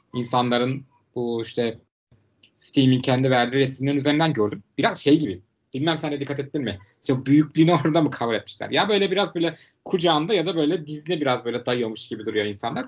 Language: Turkish